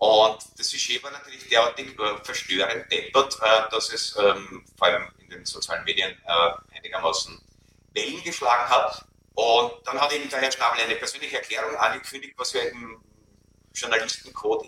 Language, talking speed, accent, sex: German, 160 wpm, Austrian, male